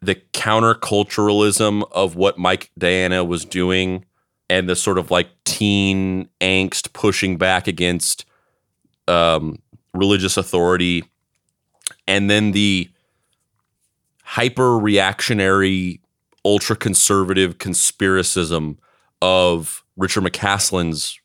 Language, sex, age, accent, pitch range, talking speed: English, male, 30-49, American, 90-105 Hz, 90 wpm